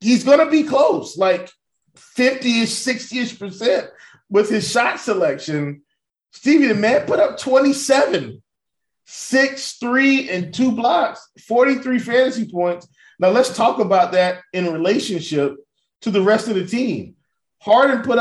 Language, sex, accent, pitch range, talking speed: English, male, American, 175-240 Hz, 140 wpm